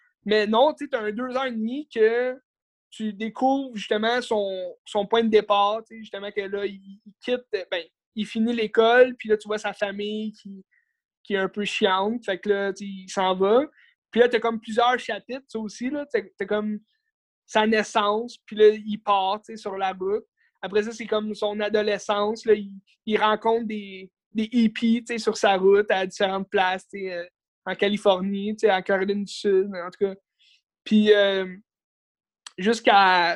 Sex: male